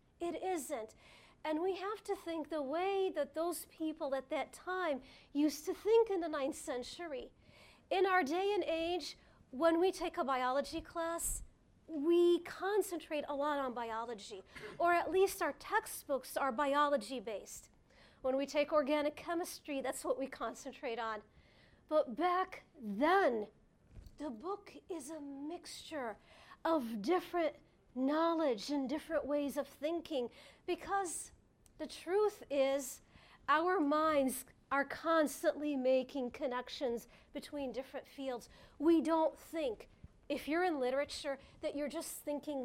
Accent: American